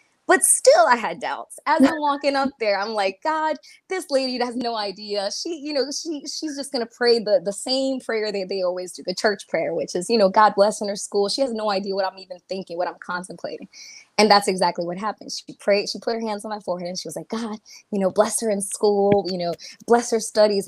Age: 20-39